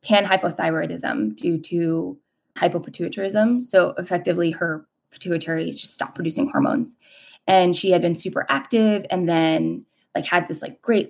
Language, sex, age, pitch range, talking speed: English, female, 20-39, 175-235 Hz, 135 wpm